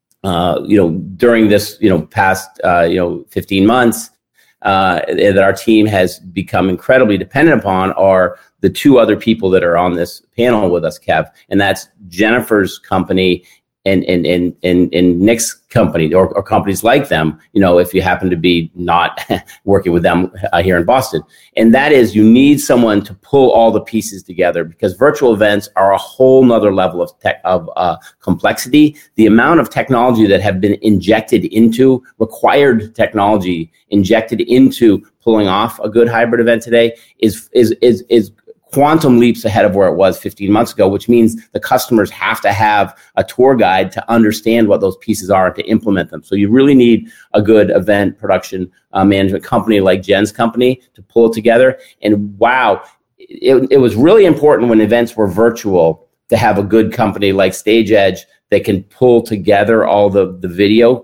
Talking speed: 185 wpm